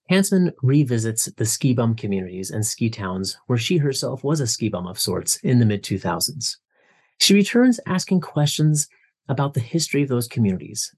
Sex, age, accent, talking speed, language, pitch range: male, 30-49, American, 160 wpm, English, 105-140 Hz